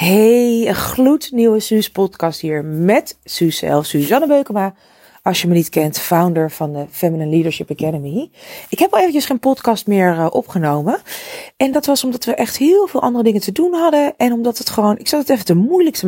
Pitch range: 165-215 Hz